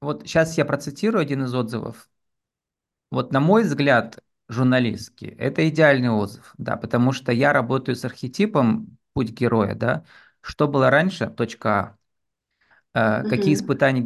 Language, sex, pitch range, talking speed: Russian, male, 120-145 Hz, 135 wpm